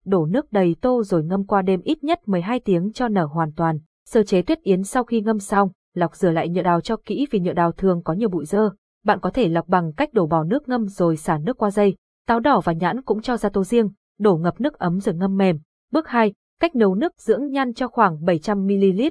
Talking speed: 250 wpm